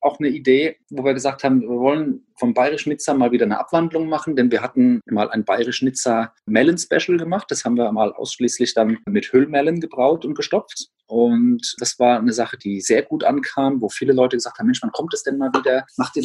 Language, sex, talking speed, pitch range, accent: German, male, 210 wpm, 115-155 Hz, German